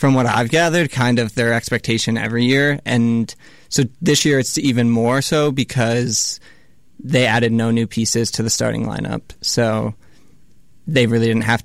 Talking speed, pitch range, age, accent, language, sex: 170 wpm, 110-125 Hz, 20-39, American, English, male